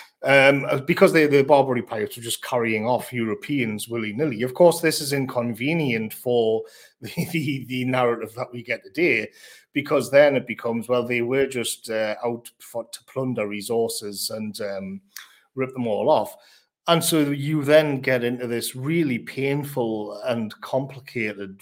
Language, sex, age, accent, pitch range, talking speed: English, male, 40-59, British, 115-140 Hz, 160 wpm